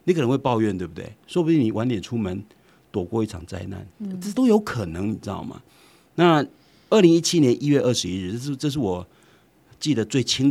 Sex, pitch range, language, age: male, 105-160 Hz, Chinese, 50-69